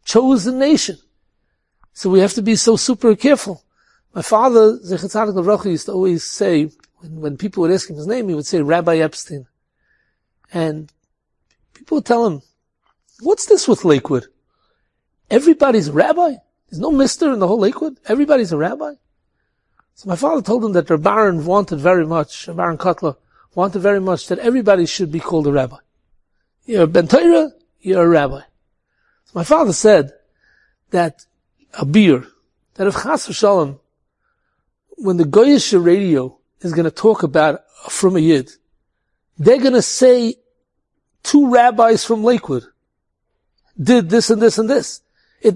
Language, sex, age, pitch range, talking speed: English, male, 60-79, 175-255 Hz, 155 wpm